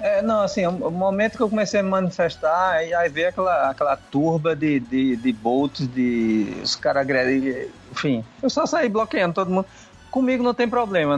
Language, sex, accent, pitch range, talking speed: Portuguese, male, Brazilian, 140-195 Hz, 195 wpm